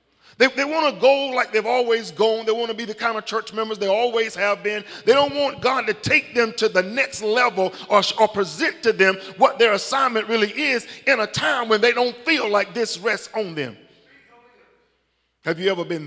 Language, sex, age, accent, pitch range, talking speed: English, male, 50-69, American, 180-245 Hz, 220 wpm